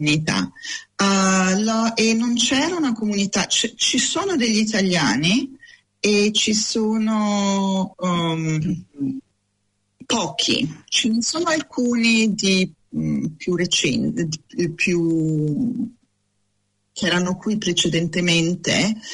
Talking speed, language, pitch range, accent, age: 90 wpm, Italian, 165-220 Hz, native, 40-59